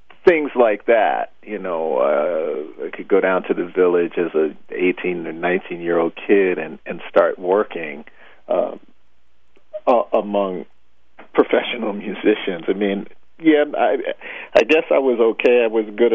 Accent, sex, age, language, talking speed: American, male, 50-69, English, 150 wpm